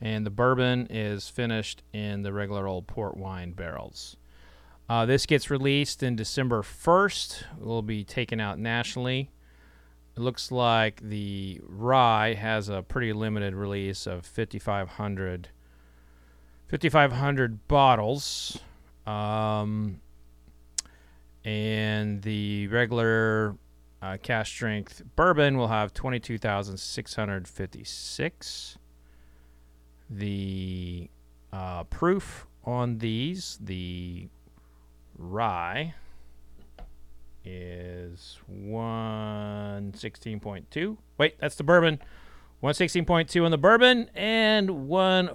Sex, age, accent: male, 30-49, American